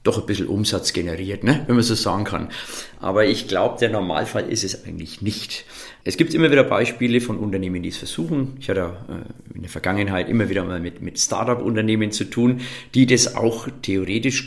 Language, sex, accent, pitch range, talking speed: German, male, German, 95-125 Hz, 195 wpm